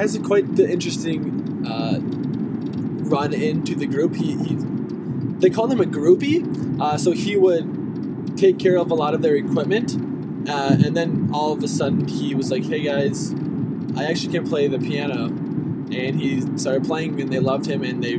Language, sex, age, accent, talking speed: English, male, 20-39, American, 190 wpm